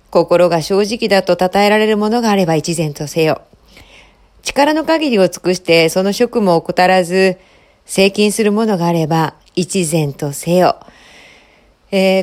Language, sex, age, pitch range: Japanese, female, 40-59, 160-225 Hz